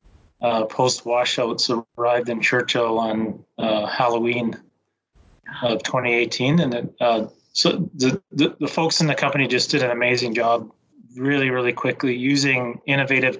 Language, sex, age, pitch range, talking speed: English, male, 30-49, 120-135 Hz, 145 wpm